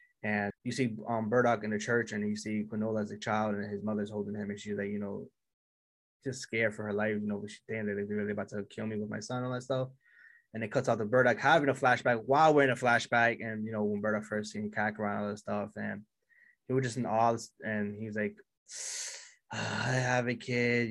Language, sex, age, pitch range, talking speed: English, male, 20-39, 105-120 Hz, 250 wpm